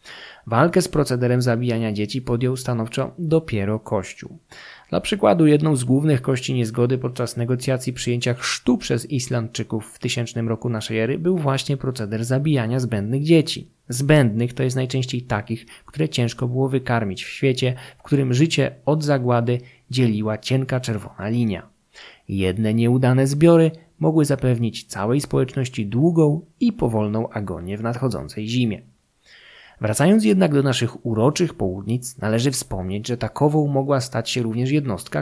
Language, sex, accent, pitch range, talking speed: Polish, male, native, 110-140 Hz, 140 wpm